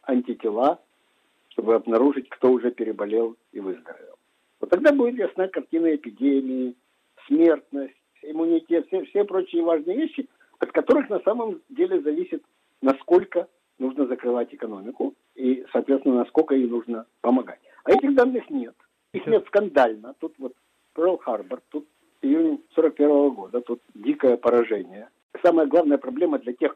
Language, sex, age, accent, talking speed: Russian, male, 50-69, native, 135 wpm